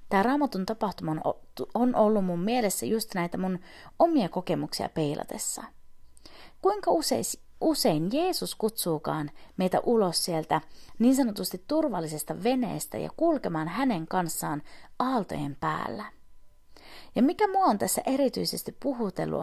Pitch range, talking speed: 175-265 Hz, 115 wpm